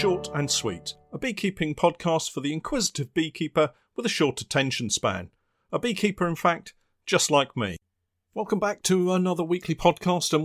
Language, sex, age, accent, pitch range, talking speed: English, male, 40-59, British, 130-175 Hz, 165 wpm